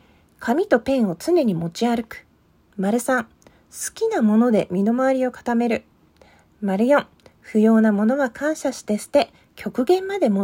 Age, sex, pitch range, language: 40-59, female, 205-280 Hz, Japanese